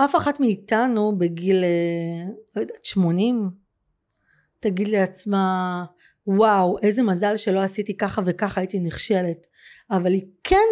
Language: Hebrew